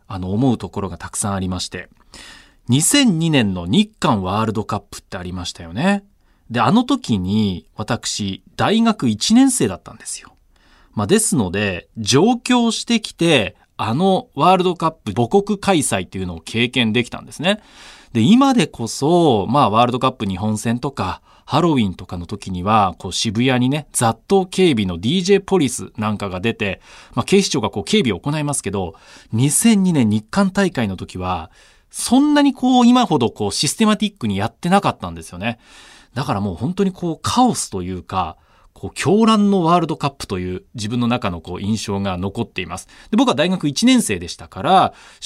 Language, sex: Japanese, male